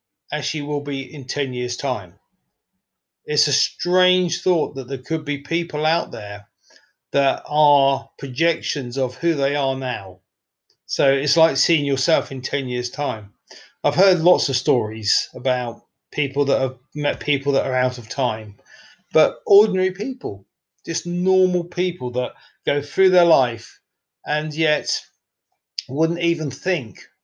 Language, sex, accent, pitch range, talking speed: English, male, British, 130-165 Hz, 150 wpm